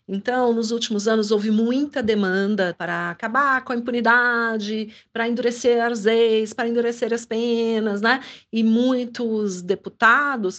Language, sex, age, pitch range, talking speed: Portuguese, female, 40-59, 195-235 Hz, 135 wpm